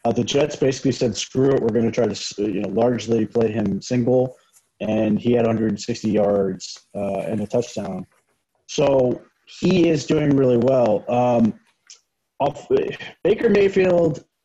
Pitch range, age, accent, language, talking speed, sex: 120-150 Hz, 30-49, American, English, 155 wpm, male